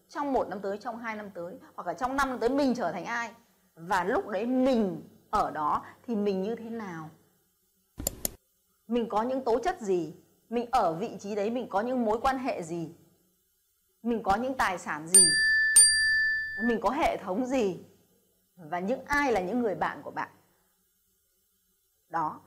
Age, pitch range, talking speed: 20-39, 185-255 Hz, 180 wpm